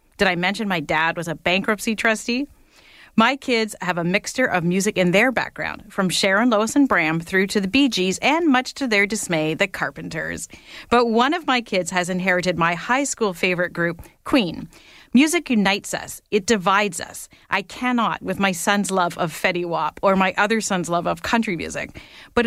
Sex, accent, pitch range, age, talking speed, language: female, American, 180-235 Hz, 40-59, 195 wpm, English